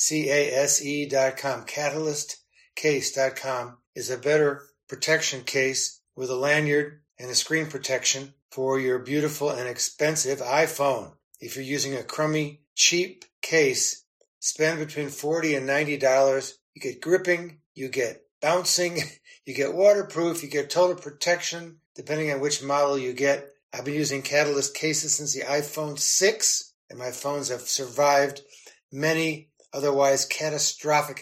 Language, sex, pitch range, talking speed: English, male, 135-155 Hz, 135 wpm